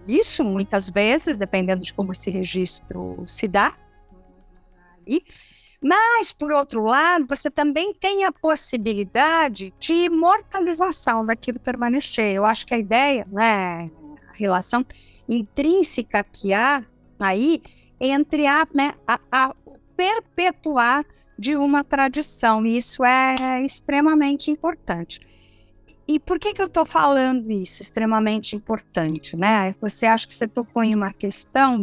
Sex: female